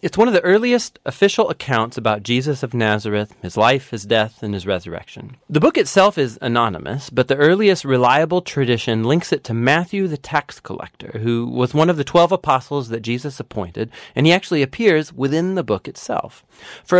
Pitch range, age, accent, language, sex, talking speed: 120-165 Hz, 30-49, American, English, male, 190 wpm